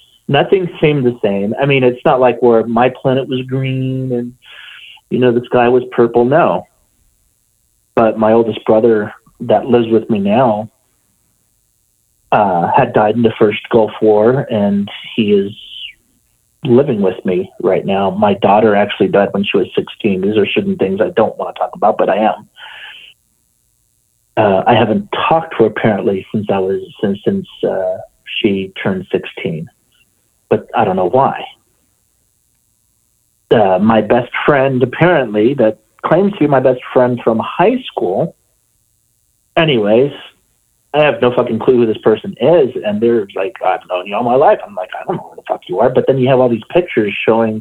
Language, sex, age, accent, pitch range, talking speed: English, male, 40-59, American, 110-130 Hz, 180 wpm